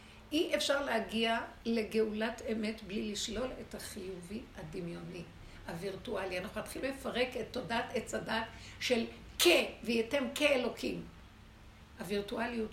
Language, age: Hebrew, 60-79